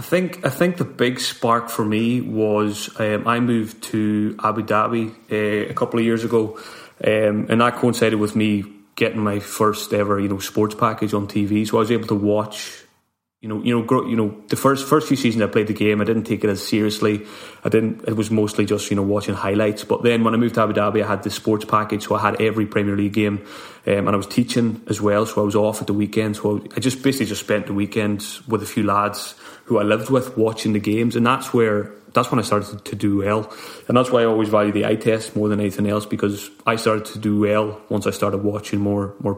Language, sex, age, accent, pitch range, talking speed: English, male, 30-49, British, 105-110 Hz, 250 wpm